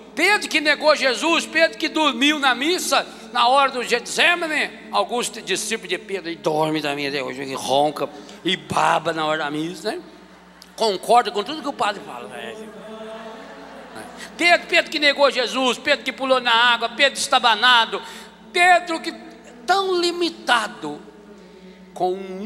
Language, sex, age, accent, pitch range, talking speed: Portuguese, male, 60-79, Brazilian, 180-265 Hz, 150 wpm